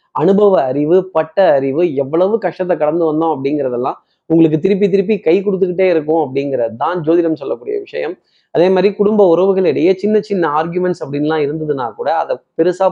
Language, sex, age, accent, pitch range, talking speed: Tamil, male, 20-39, native, 160-190 Hz, 150 wpm